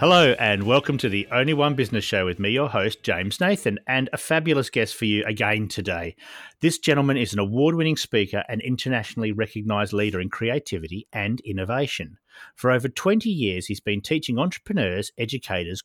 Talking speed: 180 wpm